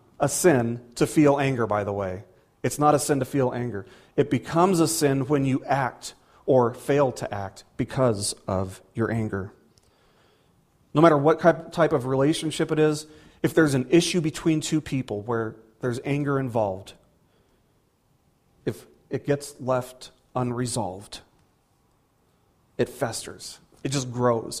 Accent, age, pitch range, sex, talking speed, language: American, 40-59, 120-160 Hz, male, 145 wpm, English